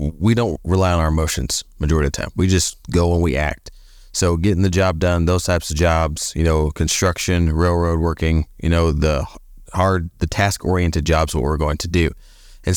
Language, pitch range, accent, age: English, 80-95 Hz, American, 20-39